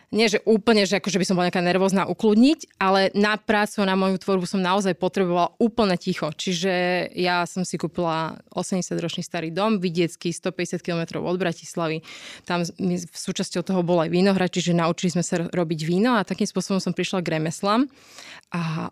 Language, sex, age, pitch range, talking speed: Slovak, female, 20-39, 175-195 Hz, 175 wpm